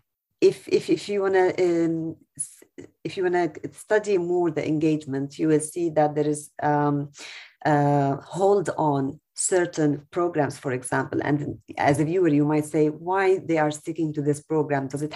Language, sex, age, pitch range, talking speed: English, female, 30-49, 145-170 Hz, 175 wpm